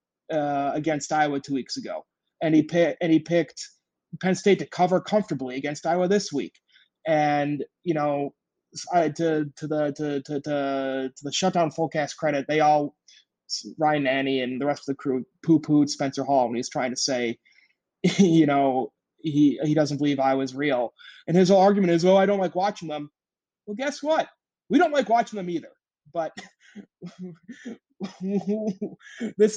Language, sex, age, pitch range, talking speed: English, male, 20-39, 150-225 Hz, 175 wpm